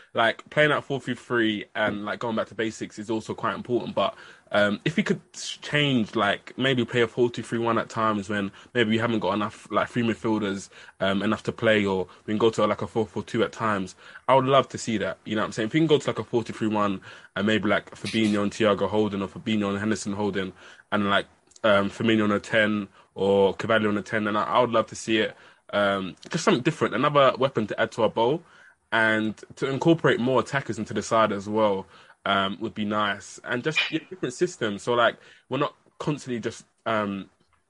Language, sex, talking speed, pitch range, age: English, male, 230 wpm, 105-120 Hz, 20-39